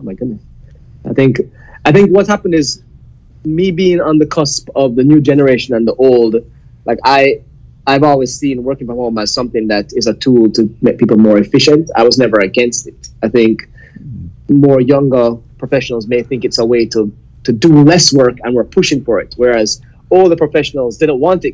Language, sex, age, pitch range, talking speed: English, male, 20-39, 115-145 Hz, 205 wpm